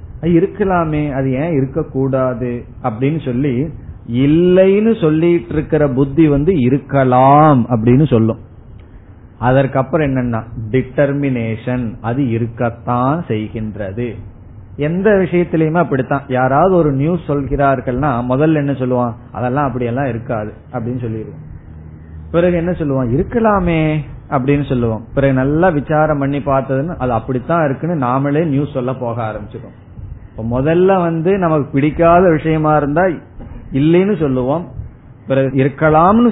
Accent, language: native, Tamil